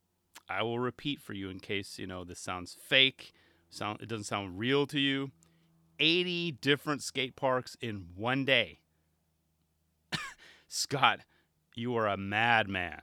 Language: English